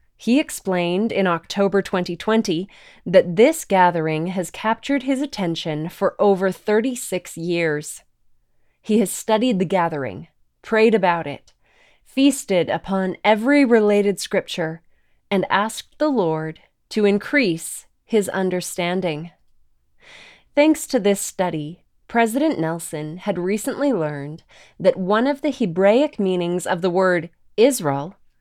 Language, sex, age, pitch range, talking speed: English, female, 20-39, 175-225 Hz, 120 wpm